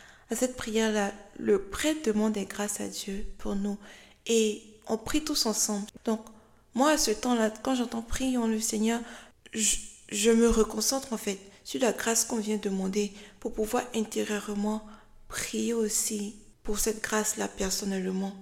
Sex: female